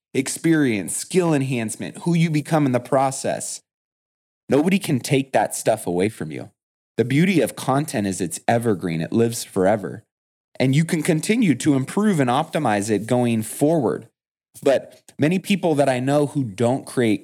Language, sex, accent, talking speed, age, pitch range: English, male, American, 165 wpm, 20-39, 110-150 Hz